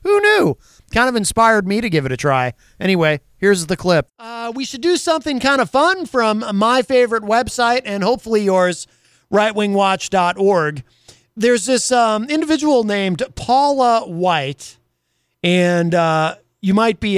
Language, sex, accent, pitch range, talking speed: English, male, American, 175-235 Hz, 150 wpm